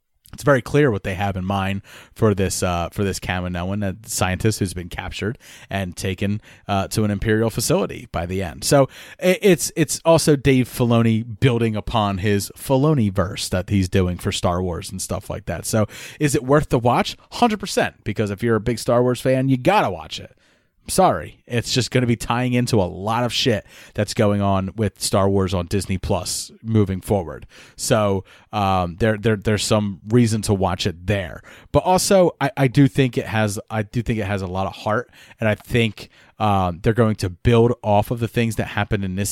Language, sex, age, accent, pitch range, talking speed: English, male, 30-49, American, 100-120 Hz, 210 wpm